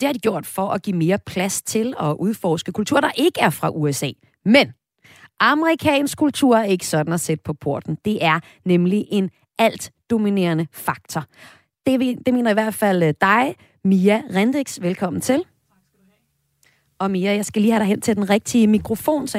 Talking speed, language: 180 wpm, Danish